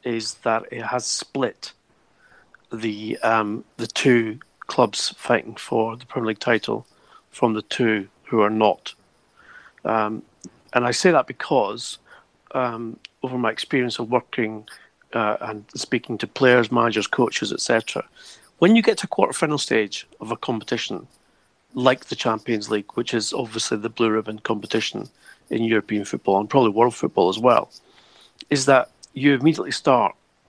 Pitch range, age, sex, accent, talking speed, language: 110-135 Hz, 40-59, male, British, 150 wpm, English